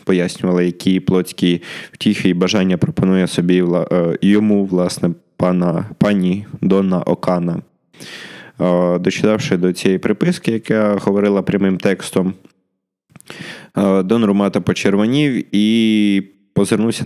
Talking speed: 90 wpm